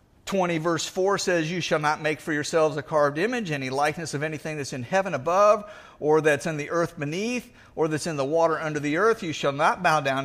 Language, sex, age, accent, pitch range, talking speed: English, male, 50-69, American, 140-190 Hz, 235 wpm